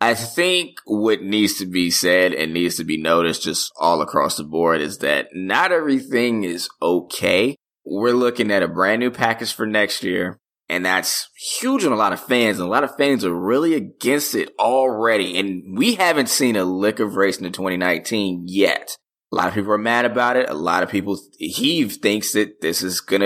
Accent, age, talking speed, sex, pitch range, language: American, 20-39, 210 wpm, male, 90-120 Hz, English